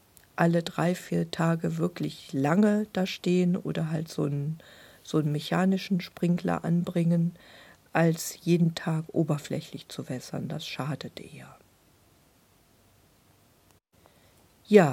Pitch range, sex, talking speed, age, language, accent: 145-180 Hz, female, 105 wpm, 50-69, German, German